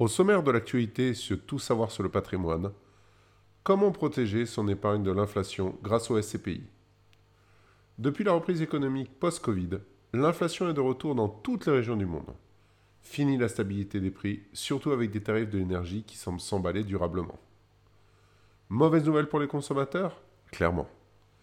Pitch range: 100-135 Hz